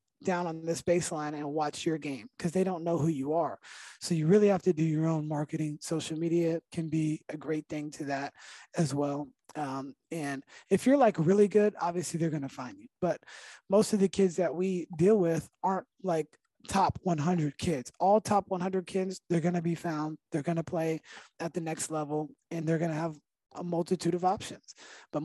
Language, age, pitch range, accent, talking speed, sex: English, 20-39, 155-185 Hz, American, 210 wpm, male